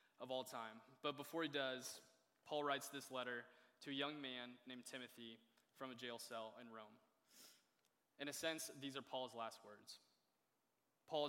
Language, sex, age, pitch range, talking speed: English, male, 20-39, 125-140 Hz, 170 wpm